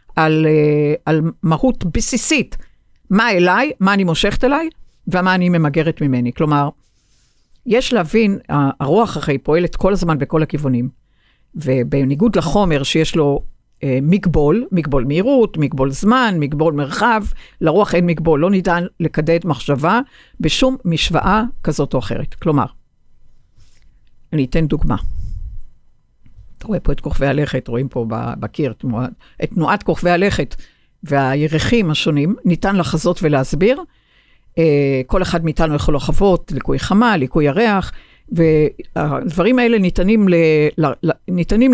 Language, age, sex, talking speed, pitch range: Hebrew, 60-79, female, 115 wpm, 140-190 Hz